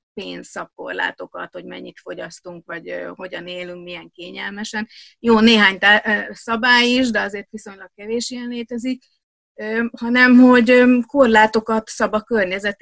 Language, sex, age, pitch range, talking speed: Hungarian, female, 30-49, 195-230 Hz, 145 wpm